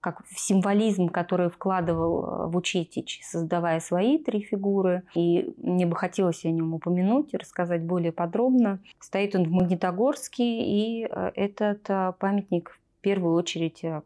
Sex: female